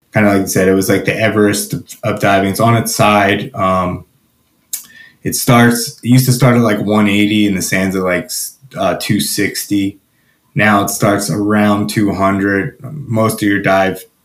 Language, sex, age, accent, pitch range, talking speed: English, male, 20-39, American, 95-110 Hz, 175 wpm